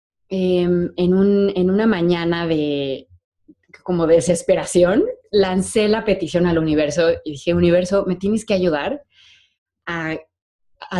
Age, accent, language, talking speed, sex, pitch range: 20-39, Mexican, Spanish, 130 wpm, female, 160-200 Hz